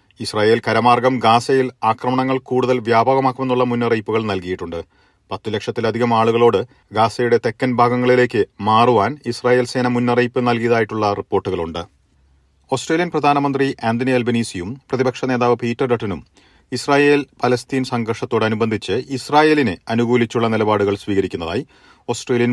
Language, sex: Malayalam, male